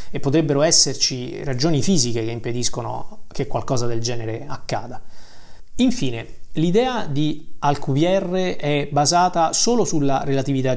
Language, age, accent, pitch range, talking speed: Italian, 30-49, native, 130-160 Hz, 125 wpm